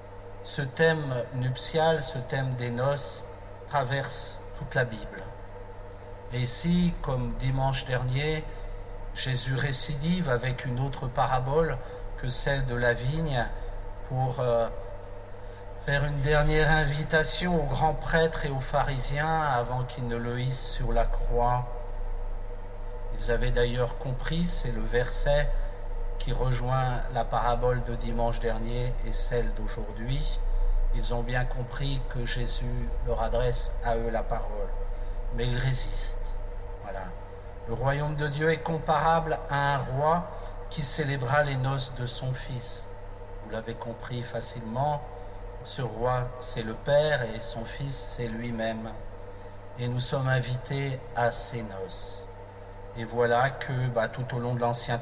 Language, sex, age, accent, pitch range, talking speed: French, male, 50-69, French, 100-135 Hz, 135 wpm